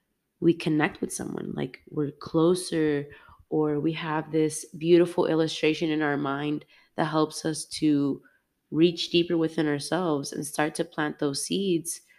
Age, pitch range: 20-39, 145-160 Hz